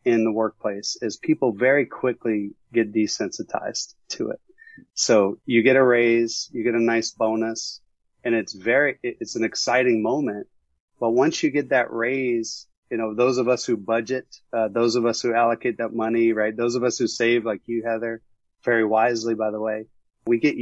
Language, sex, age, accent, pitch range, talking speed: English, male, 30-49, American, 110-140 Hz, 190 wpm